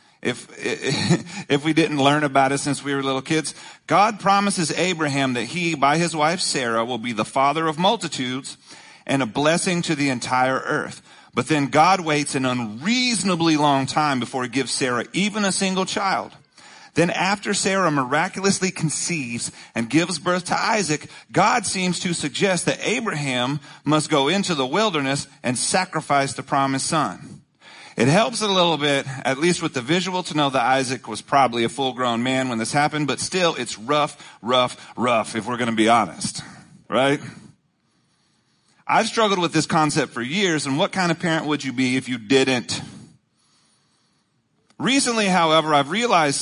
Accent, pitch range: American, 135-175 Hz